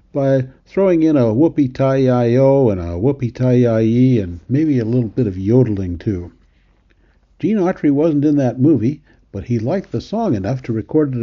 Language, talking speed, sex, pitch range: English, 190 wpm, male, 110-150 Hz